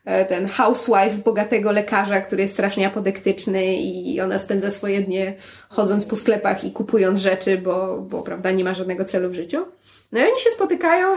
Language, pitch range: Polish, 200-255 Hz